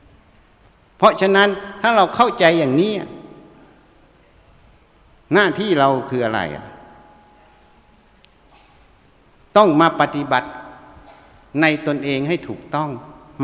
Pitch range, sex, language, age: 130-180 Hz, male, Thai, 60-79